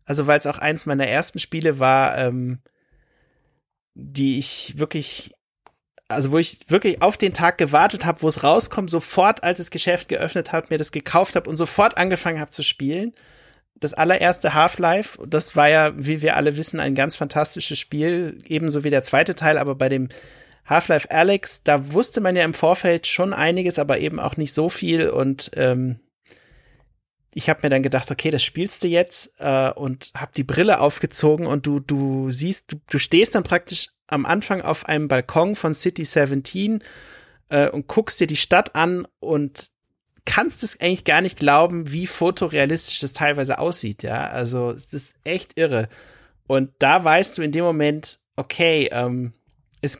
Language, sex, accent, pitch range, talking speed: German, male, German, 140-175 Hz, 180 wpm